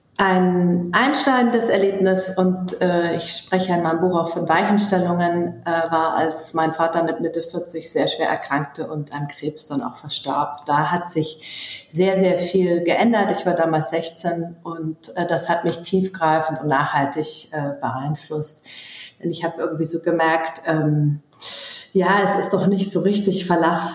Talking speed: 165 wpm